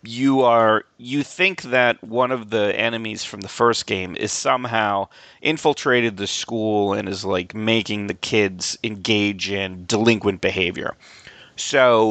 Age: 30-49